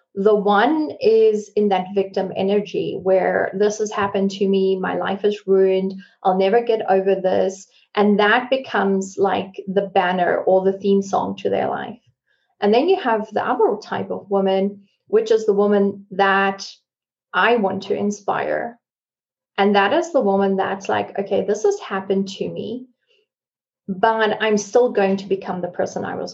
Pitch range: 190-225 Hz